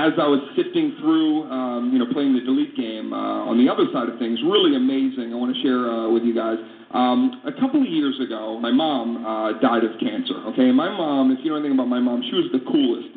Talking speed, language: 245 wpm, English